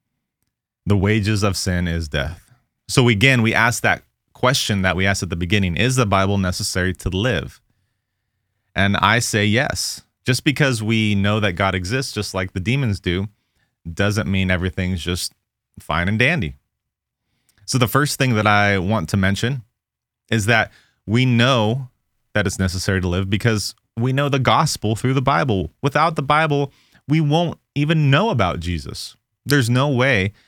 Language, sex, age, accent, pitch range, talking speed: English, male, 30-49, American, 95-125 Hz, 165 wpm